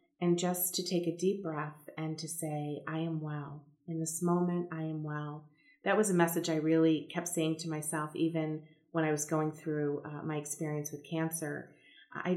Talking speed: 200 wpm